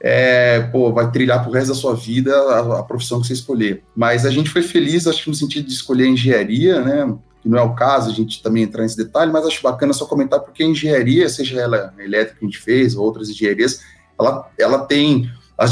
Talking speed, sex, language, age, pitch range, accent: 235 wpm, male, Portuguese, 30-49, 120-165 Hz, Brazilian